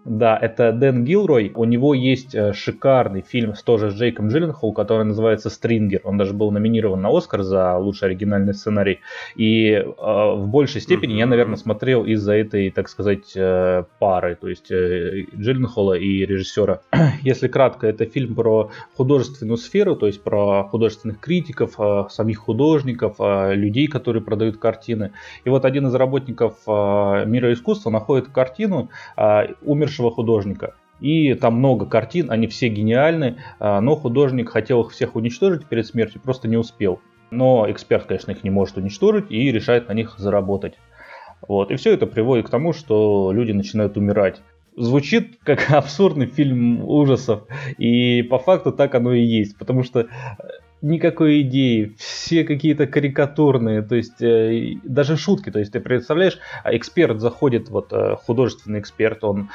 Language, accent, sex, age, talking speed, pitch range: Russian, native, male, 20-39, 155 wpm, 105-130 Hz